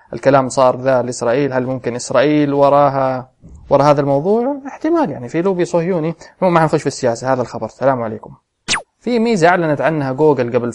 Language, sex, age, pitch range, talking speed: English, male, 20-39, 125-150 Hz, 175 wpm